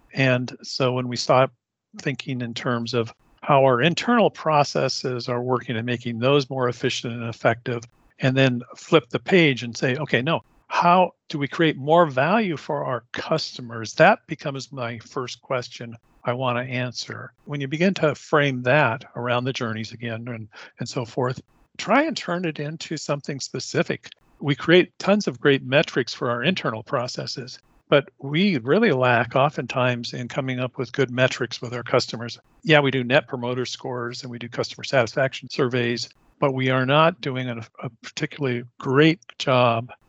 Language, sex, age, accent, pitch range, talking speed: English, male, 50-69, American, 120-150 Hz, 170 wpm